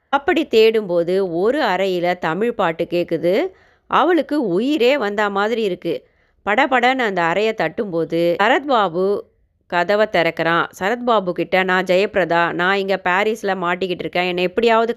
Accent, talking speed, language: native, 120 wpm, Tamil